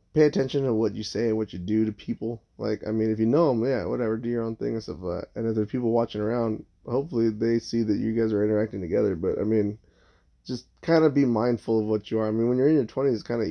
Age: 20-39